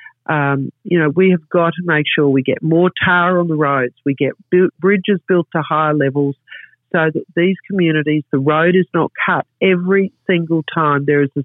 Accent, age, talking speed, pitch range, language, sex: Australian, 50-69, 205 wpm, 145-180 Hz, English, female